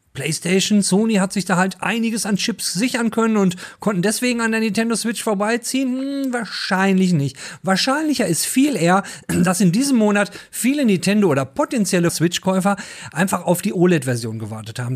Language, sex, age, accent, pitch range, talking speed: German, male, 40-59, German, 170-230 Hz, 165 wpm